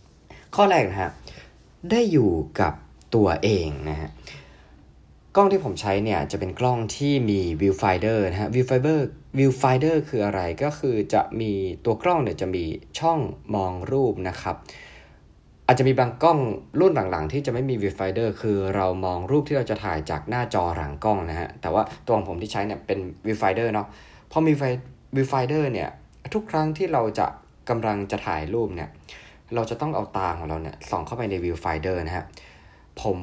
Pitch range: 90-125 Hz